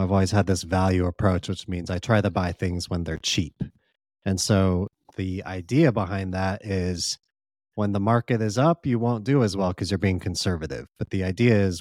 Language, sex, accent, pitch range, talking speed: English, male, American, 90-105 Hz, 210 wpm